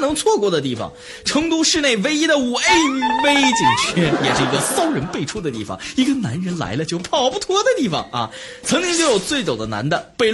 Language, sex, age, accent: Chinese, male, 20-39, native